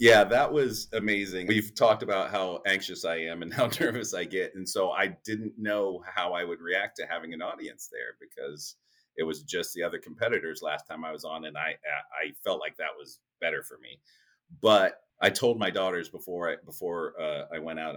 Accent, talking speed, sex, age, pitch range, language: American, 215 wpm, male, 30-49, 85-120 Hz, English